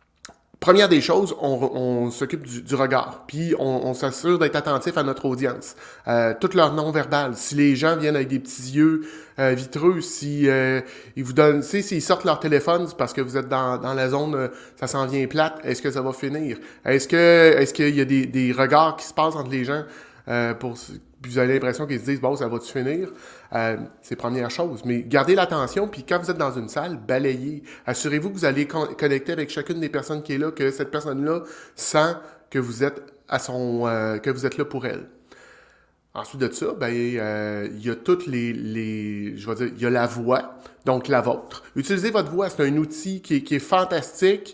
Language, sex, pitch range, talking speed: French, male, 125-155 Hz, 225 wpm